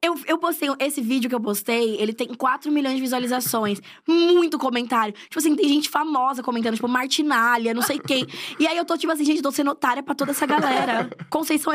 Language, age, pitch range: Portuguese, 10-29, 230-300 Hz